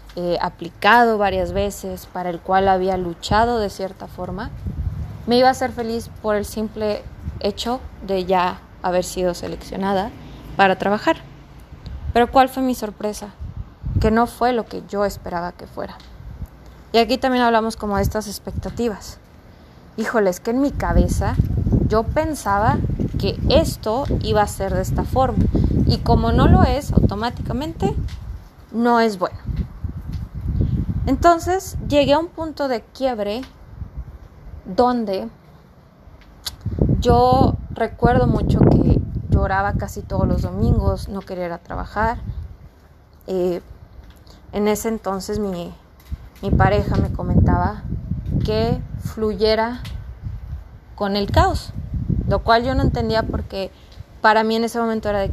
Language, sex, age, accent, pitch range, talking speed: Spanish, female, 20-39, Mexican, 180-235 Hz, 135 wpm